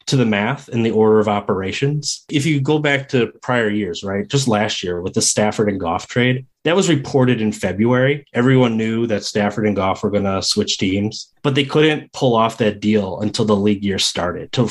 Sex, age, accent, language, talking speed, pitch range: male, 30-49, American, English, 215 wpm, 105-135 Hz